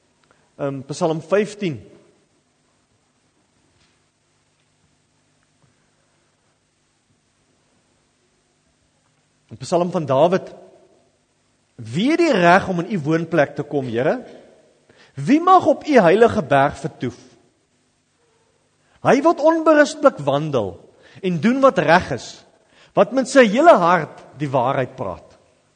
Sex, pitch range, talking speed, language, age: male, 155-245 Hz, 90 wpm, English, 40-59